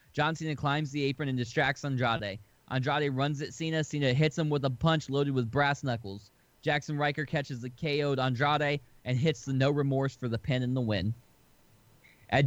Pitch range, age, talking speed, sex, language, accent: 125-150 Hz, 20-39, 190 wpm, male, English, American